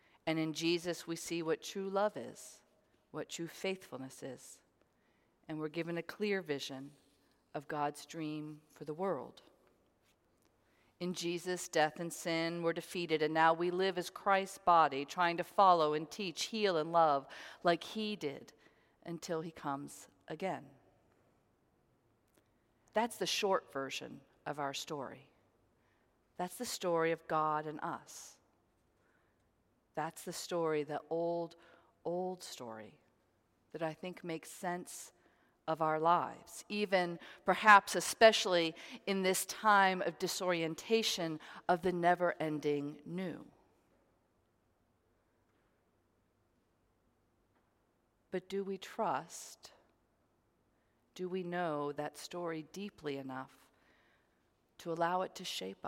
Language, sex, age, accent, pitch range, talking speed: English, female, 40-59, American, 140-180 Hz, 120 wpm